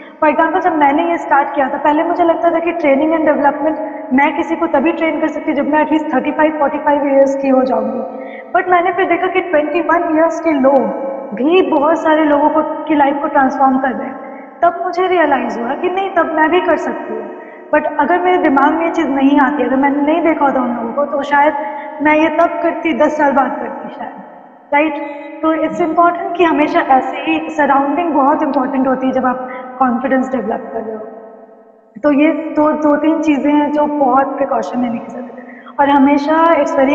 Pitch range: 270-320 Hz